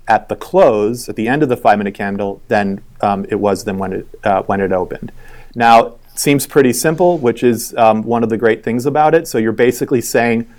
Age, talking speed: 40-59, 225 wpm